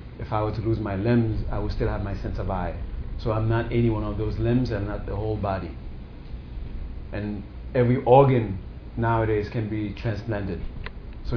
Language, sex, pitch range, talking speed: English, male, 95-115 Hz, 190 wpm